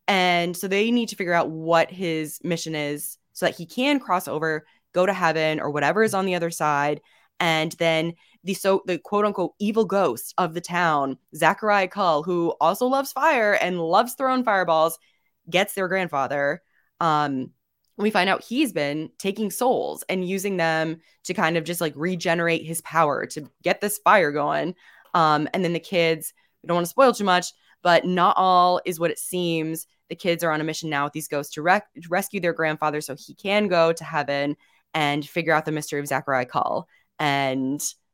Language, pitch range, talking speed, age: English, 160-200 Hz, 195 wpm, 10-29